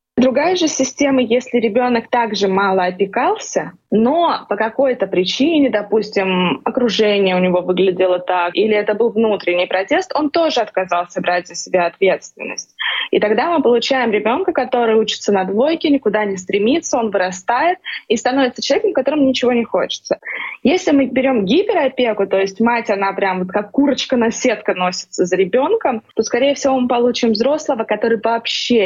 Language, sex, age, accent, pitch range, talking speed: Russian, female, 20-39, native, 200-270 Hz, 160 wpm